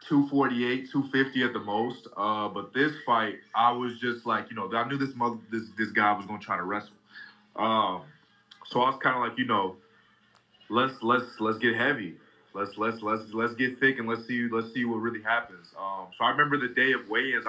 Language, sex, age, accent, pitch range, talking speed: English, male, 20-39, American, 110-125 Hz, 215 wpm